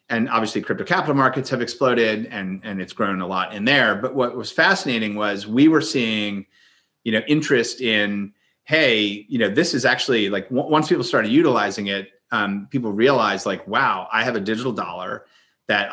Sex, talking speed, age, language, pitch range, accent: male, 190 wpm, 30-49, English, 95-120 Hz, American